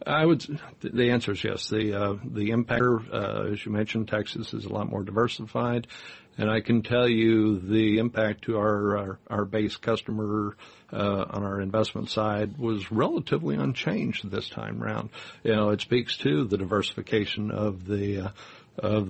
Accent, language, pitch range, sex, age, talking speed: American, English, 105-115 Hz, male, 60-79, 175 wpm